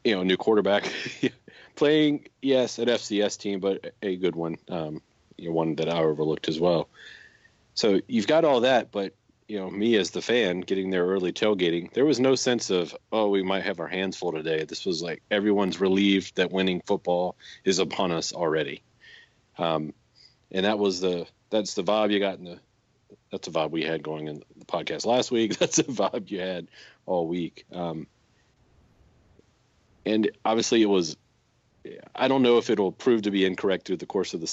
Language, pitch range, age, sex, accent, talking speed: English, 85-105 Hz, 40-59, male, American, 200 wpm